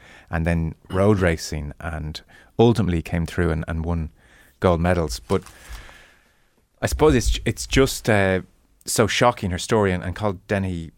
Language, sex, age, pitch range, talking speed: English, male, 30-49, 80-100 Hz, 150 wpm